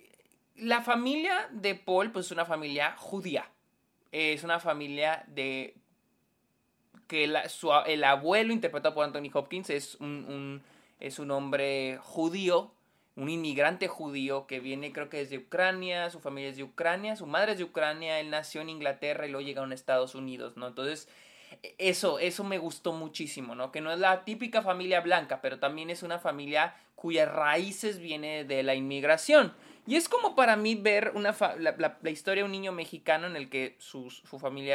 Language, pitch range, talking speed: Spanish, 140-185 Hz, 185 wpm